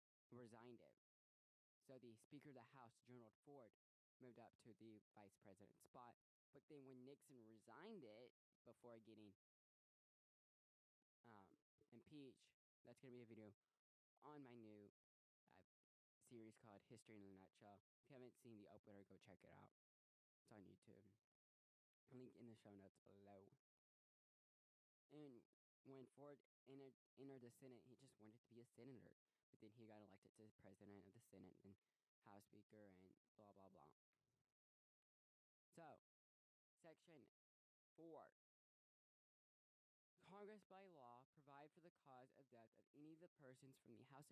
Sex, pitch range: male, 100-130 Hz